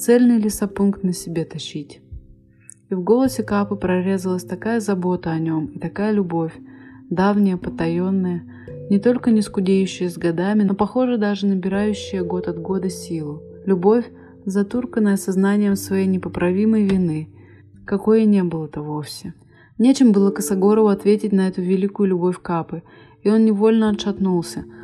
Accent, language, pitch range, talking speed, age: native, Russian, 170-210 Hz, 135 wpm, 30-49